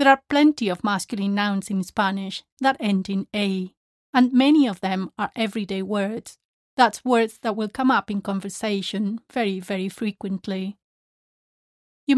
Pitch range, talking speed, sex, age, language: 195-245 Hz, 155 wpm, female, 30-49, English